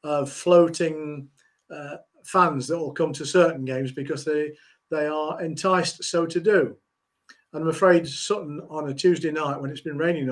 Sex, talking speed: male, 175 wpm